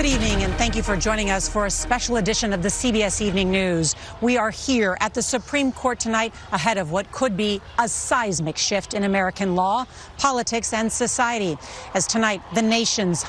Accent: American